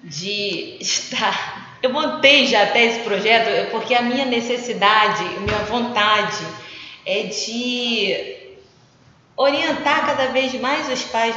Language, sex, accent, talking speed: Portuguese, female, Brazilian, 120 wpm